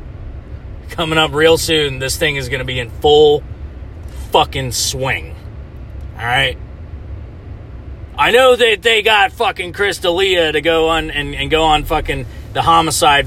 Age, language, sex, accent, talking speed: 30-49, English, male, American, 150 wpm